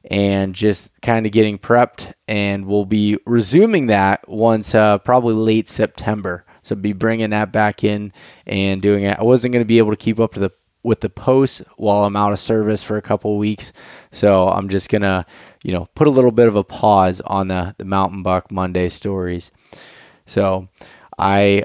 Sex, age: male, 20-39